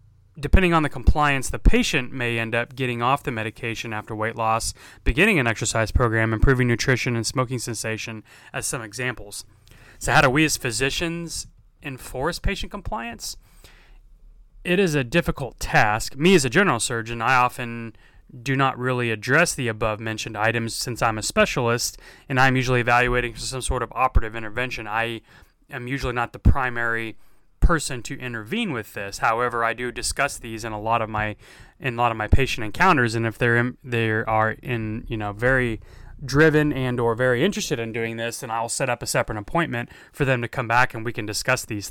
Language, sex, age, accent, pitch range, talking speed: English, male, 30-49, American, 110-130 Hz, 190 wpm